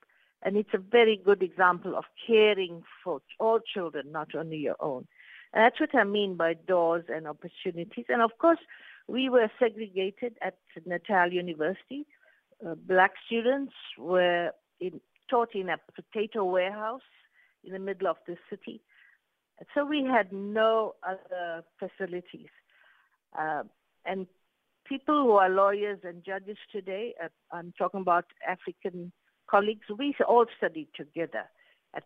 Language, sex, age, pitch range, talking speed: English, female, 50-69, 175-225 Hz, 140 wpm